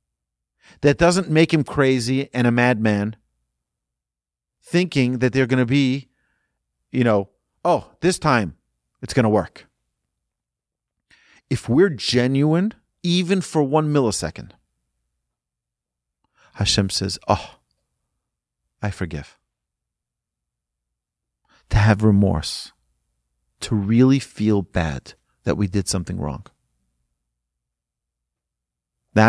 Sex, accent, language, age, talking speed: male, American, English, 40-59, 100 wpm